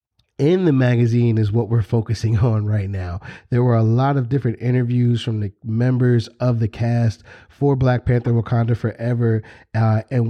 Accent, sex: American, male